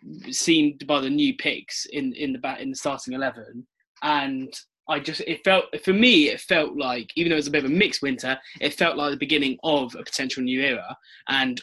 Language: English